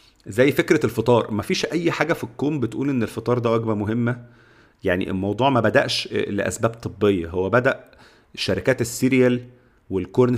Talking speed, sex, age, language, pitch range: 145 wpm, male, 40-59, Arabic, 105-130 Hz